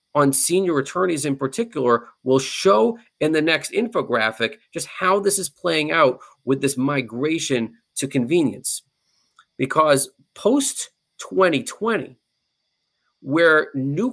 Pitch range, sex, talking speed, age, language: 135-190 Hz, male, 110 wpm, 40-59, English